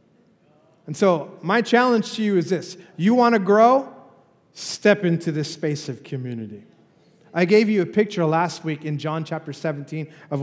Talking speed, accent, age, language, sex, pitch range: 175 wpm, American, 30-49, English, male, 145-190 Hz